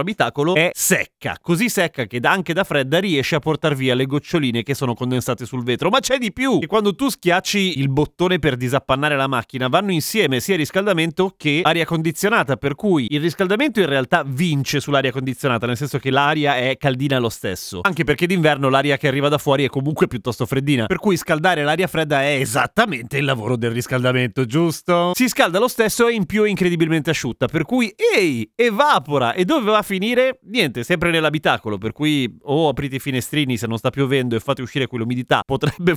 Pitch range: 130-180 Hz